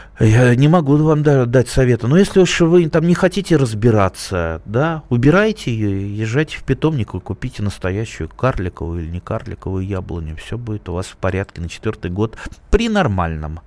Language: Russian